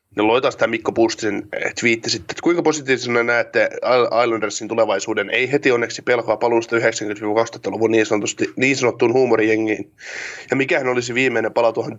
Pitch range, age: 110-130 Hz, 20-39